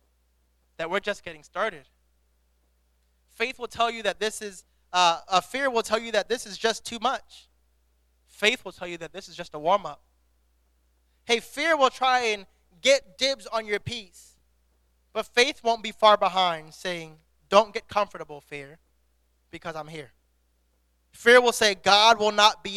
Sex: male